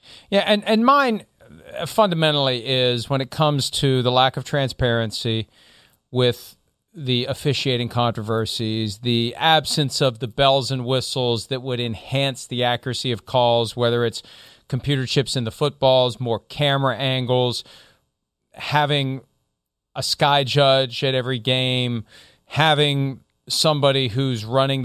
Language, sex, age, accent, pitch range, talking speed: English, male, 40-59, American, 120-160 Hz, 130 wpm